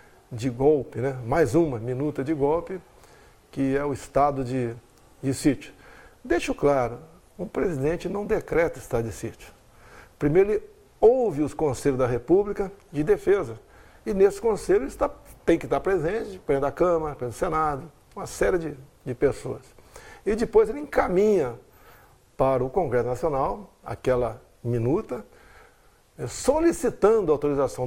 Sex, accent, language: male, Brazilian, Portuguese